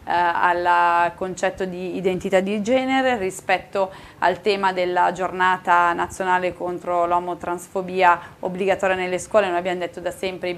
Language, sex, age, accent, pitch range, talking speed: Italian, female, 20-39, native, 180-215 Hz, 130 wpm